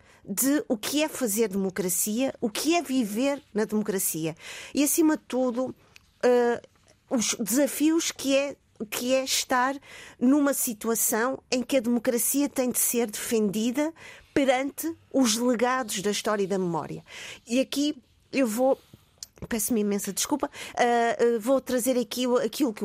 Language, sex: Portuguese, female